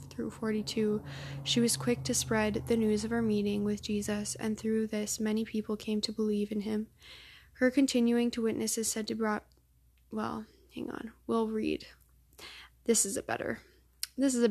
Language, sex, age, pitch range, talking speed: English, female, 10-29, 200-225 Hz, 180 wpm